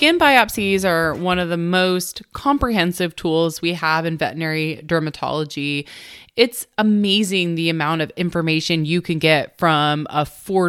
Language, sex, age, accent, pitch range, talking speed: English, female, 20-39, American, 160-215 Hz, 145 wpm